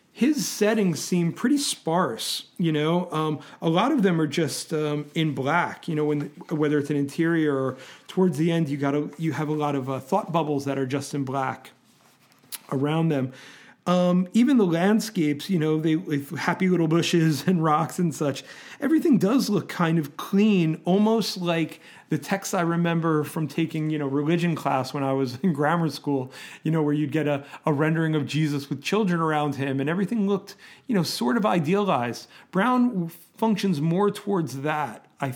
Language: English